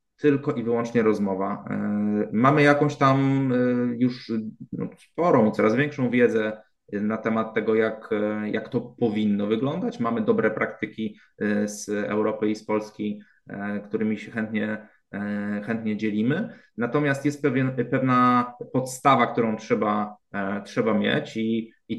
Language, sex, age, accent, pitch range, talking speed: Polish, male, 20-39, native, 105-120 Hz, 145 wpm